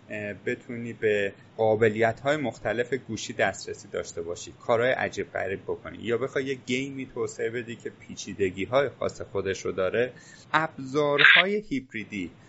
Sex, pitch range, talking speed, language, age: male, 110-145 Hz, 135 wpm, Persian, 30-49